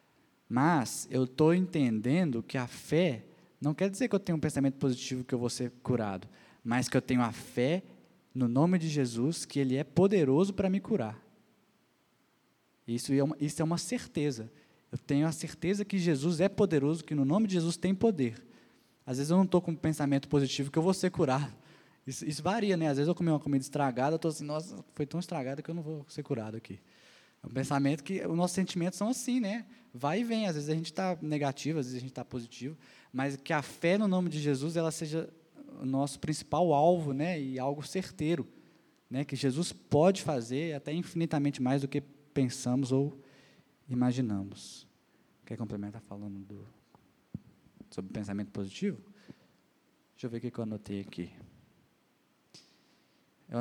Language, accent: Portuguese, Brazilian